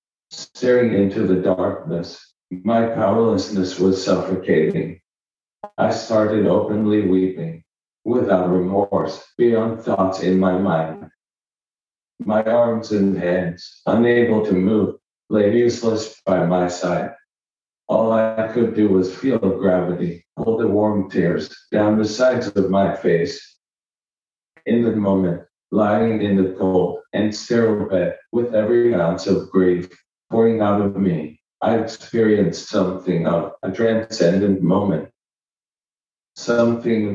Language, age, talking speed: English, 50-69, 120 wpm